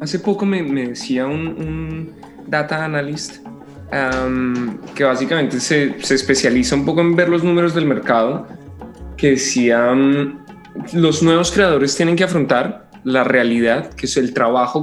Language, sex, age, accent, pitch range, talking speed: Spanish, male, 20-39, Colombian, 125-160 Hz, 155 wpm